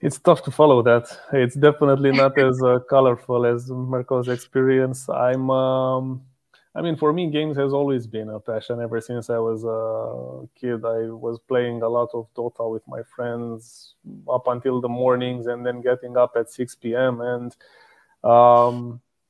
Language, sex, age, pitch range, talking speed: Romanian, male, 20-39, 120-130 Hz, 170 wpm